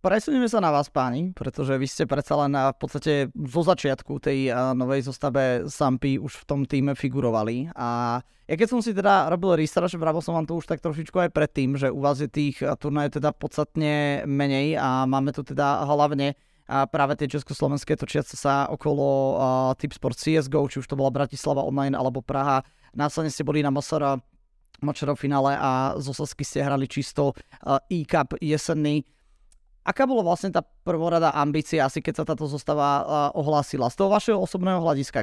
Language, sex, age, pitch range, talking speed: Slovak, male, 20-39, 140-165 Hz, 185 wpm